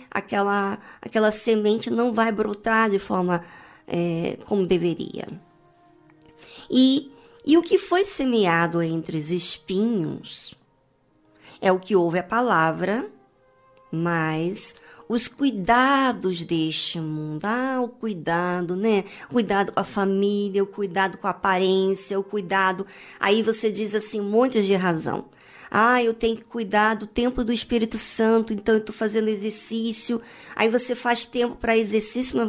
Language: Portuguese